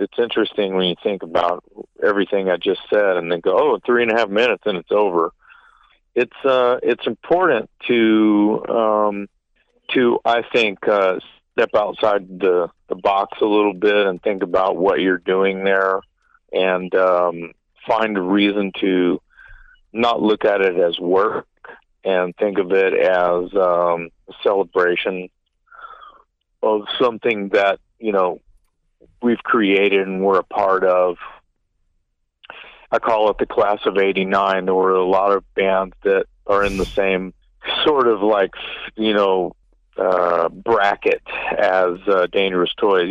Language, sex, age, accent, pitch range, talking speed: English, male, 50-69, American, 95-115 Hz, 150 wpm